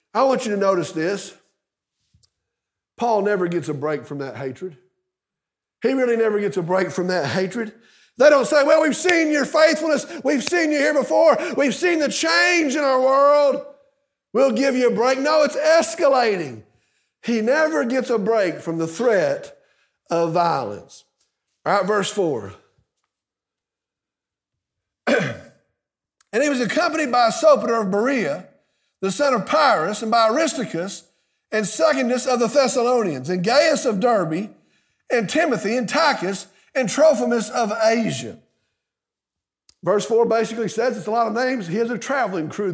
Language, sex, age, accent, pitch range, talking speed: English, male, 50-69, American, 200-285 Hz, 155 wpm